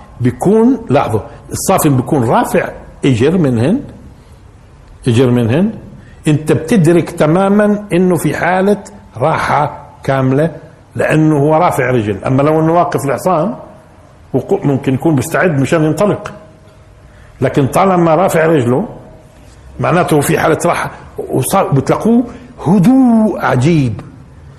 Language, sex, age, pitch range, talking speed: Arabic, male, 60-79, 135-200 Hz, 100 wpm